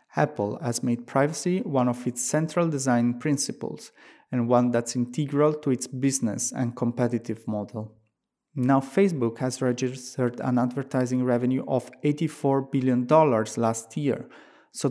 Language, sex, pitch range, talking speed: English, male, 120-135 Hz, 135 wpm